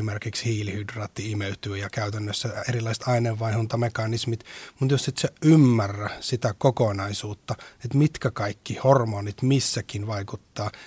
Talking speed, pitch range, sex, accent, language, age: 110 wpm, 110-140 Hz, male, native, Finnish, 30-49